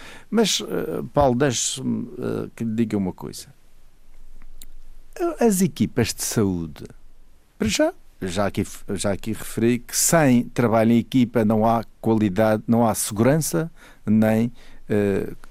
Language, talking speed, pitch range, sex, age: Portuguese, 120 wpm, 115-165 Hz, male, 50-69